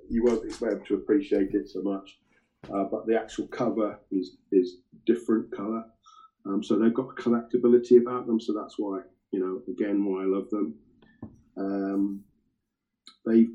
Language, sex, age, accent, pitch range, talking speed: English, male, 40-59, British, 95-115 Hz, 165 wpm